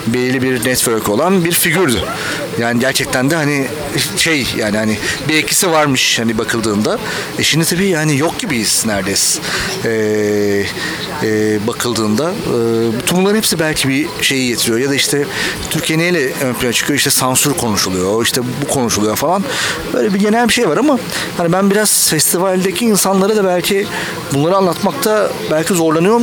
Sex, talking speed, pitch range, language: male, 155 wpm, 115-160 Hz, Turkish